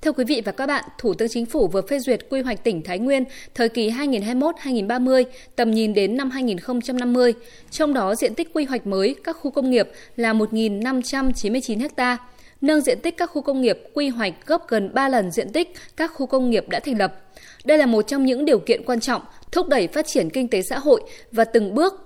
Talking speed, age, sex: 225 wpm, 20-39, female